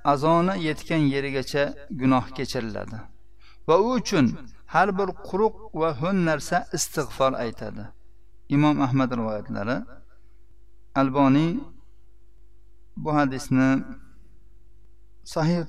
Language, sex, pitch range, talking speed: Russian, male, 125-165 Hz, 65 wpm